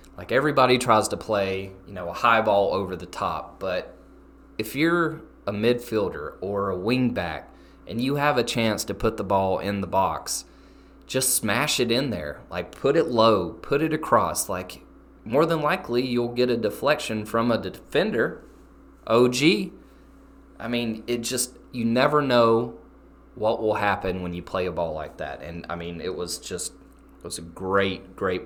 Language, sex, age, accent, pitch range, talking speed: English, male, 20-39, American, 95-125 Hz, 185 wpm